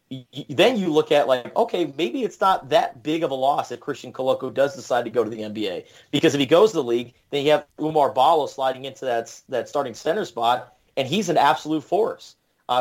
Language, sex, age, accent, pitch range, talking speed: English, male, 30-49, American, 125-155 Hz, 230 wpm